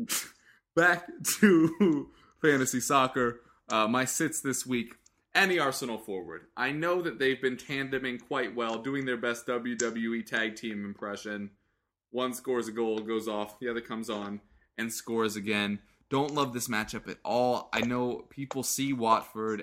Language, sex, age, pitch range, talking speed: English, male, 20-39, 105-130 Hz, 155 wpm